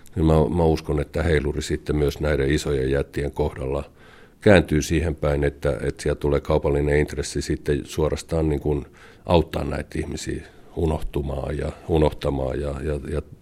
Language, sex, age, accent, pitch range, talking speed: Finnish, male, 50-69, native, 70-80 Hz, 150 wpm